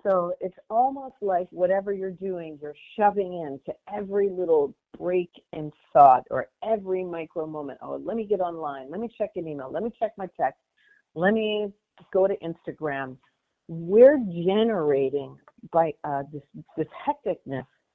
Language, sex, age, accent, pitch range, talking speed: English, female, 50-69, American, 150-185 Hz, 155 wpm